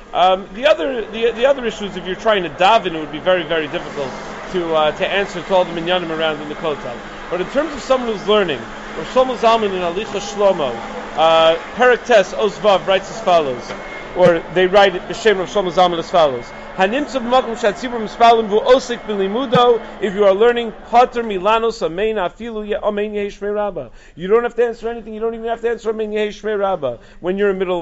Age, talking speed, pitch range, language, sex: 40-59, 170 wpm, 180-235 Hz, English, male